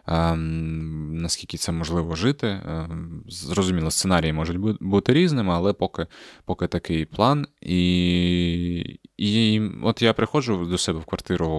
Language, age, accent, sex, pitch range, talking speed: Ukrainian, 20-39, native, male, 85-105 Hz, 120 wpm